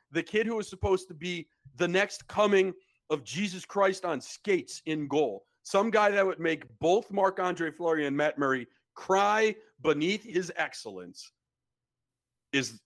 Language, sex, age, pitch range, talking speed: English, male, 40-59, 150-200 Hz, 155 wpm